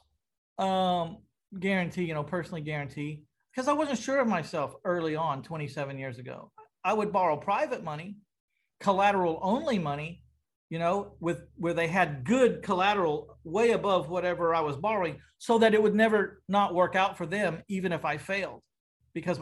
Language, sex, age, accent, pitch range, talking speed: English, male, 40-59, American, 180-235 Hz, 165 wpm